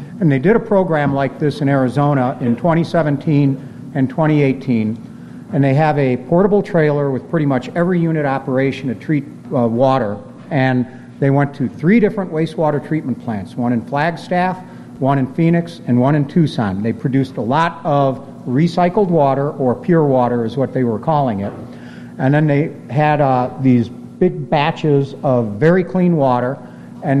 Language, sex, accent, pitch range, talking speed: English, male, American, 125-155 Hz, 170 wpm